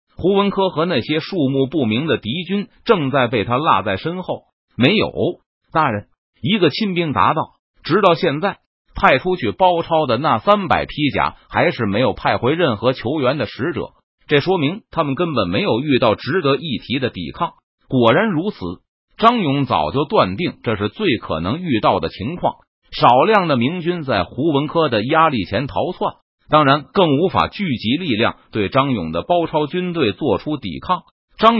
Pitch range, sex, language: 130-180 Hz, male, Chinese